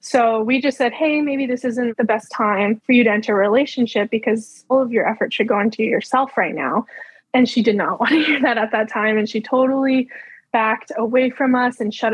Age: 10-29